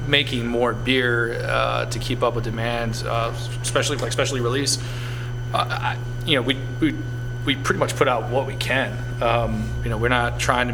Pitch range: 120-130 Hz